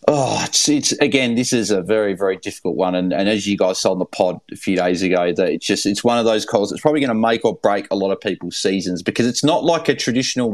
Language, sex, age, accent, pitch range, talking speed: English, male, 30-49, Australian, 100-130 Hz, 280 wpm